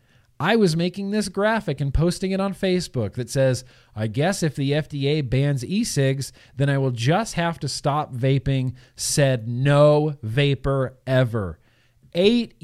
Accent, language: American, English